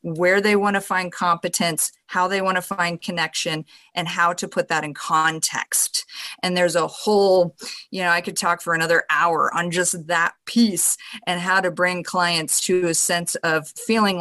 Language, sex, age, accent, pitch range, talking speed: English, female, 30-49, American, 165-210 Hz, 190 wpm